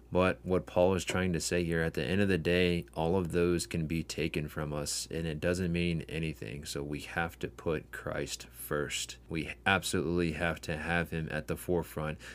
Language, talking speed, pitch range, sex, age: English, 210 wpm, 75-90 Hz, male, 20-39